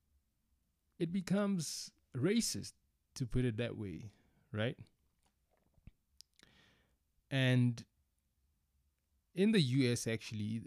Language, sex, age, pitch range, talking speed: English, male, 20-39, 100-120 Hz, 80 wpm